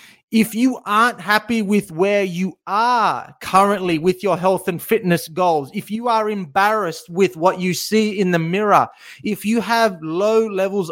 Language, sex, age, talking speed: English, male, 30-49, 170 wpm